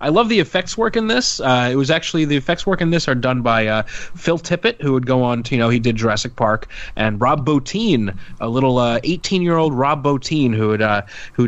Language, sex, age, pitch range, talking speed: English, male, 30-49, 115-140 Hz, 240 wpm